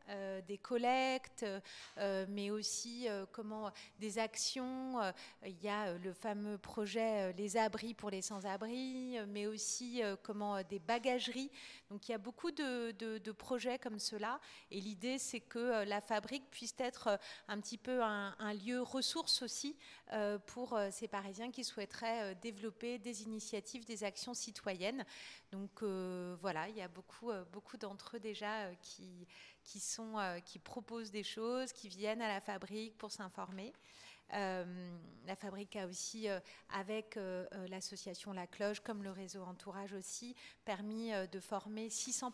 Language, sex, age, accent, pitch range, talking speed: French, female, 30-49, French, 195-235 Hz, 145 wpm